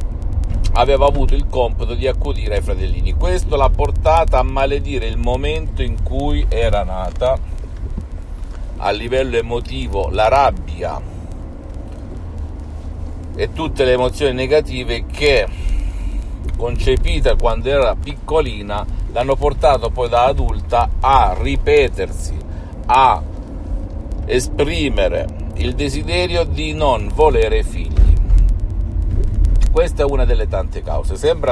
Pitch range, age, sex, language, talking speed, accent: 80-115 Hz, 50-69, male, Italian, 105 wpm, native